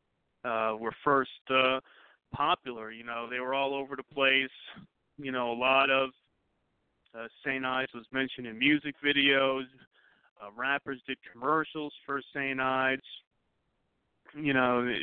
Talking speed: 140 wpm